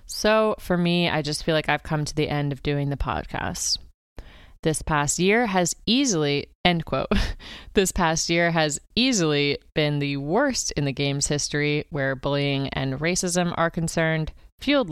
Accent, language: American, English